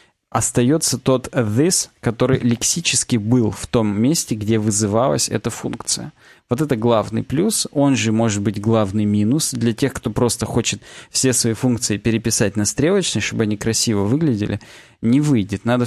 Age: 20-39